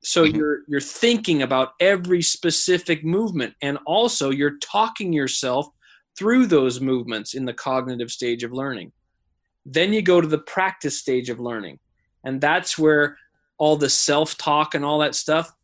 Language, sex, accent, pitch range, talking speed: English, male, American, 145-180 Hz, 155 wpm